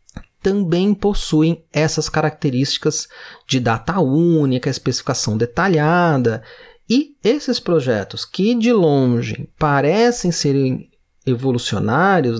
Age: 30-49